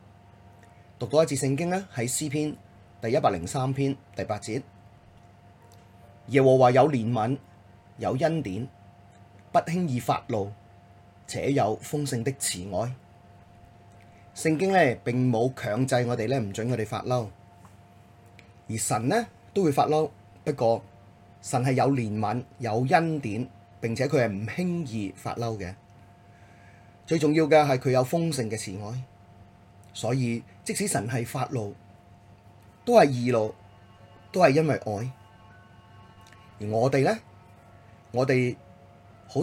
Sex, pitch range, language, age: male, 100-130 Hz, Chinese, 30-49